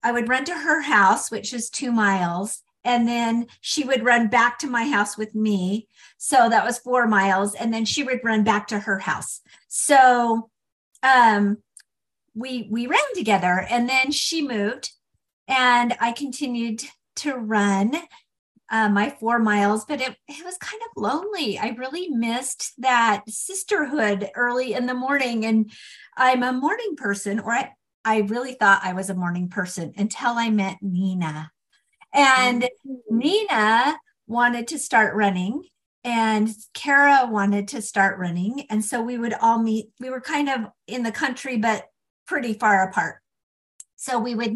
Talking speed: 165 wpm